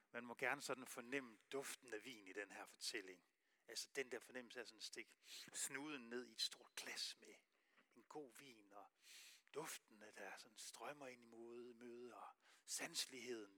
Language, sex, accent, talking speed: Danish, male, native, 175 wpm